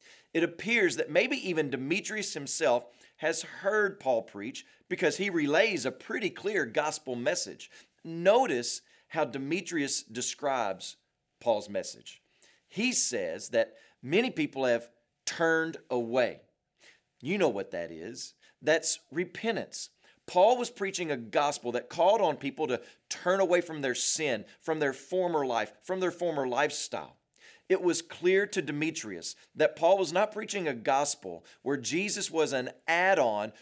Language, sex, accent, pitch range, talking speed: English, male, American, 135-190 Hz, 145 wpm